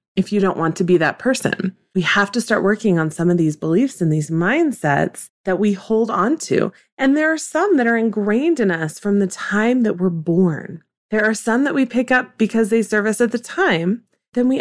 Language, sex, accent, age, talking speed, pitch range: English, female, American, 30-49, 235 wpm, 180-235 Hz